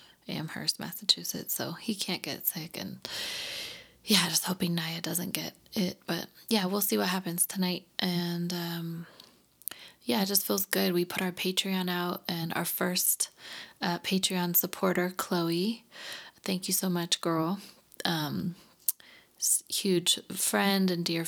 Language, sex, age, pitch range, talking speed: English, female, 20-39, 165-190 Hz, 145 wpm